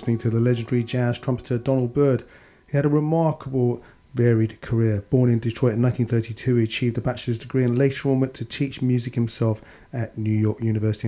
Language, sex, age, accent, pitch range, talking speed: English, male, 40-59, British, 110-130 Hz, 190 wpm